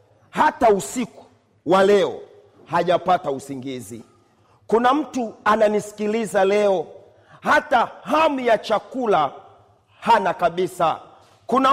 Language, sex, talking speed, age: Swahili, male, 85 wpm, 40-59